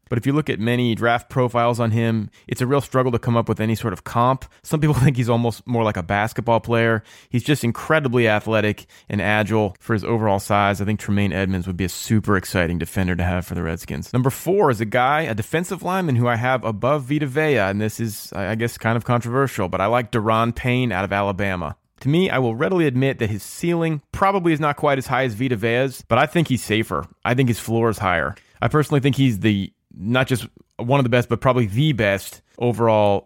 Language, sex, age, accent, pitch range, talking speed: English, male, 30-49, American, 100-125 Hz, 240 wpm